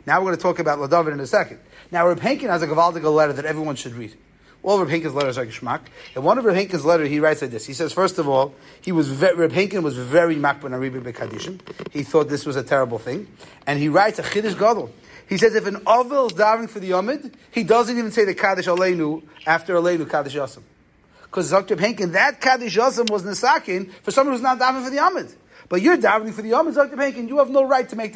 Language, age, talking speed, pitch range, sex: English, 30-49, 250 wpm, 160-245 Hz, male